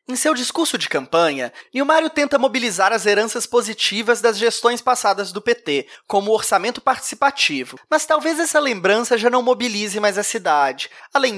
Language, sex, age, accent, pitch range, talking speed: Portuguese, male, 20-39, Brazilian, 200-255 Hz, 165 wpm